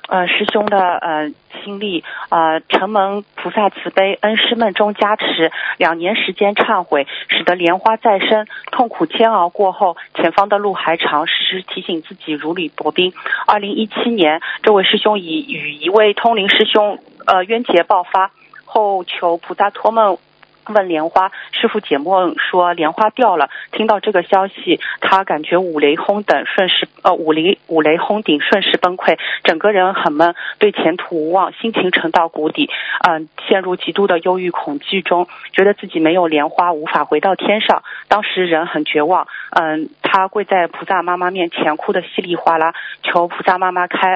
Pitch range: 170-210 Hz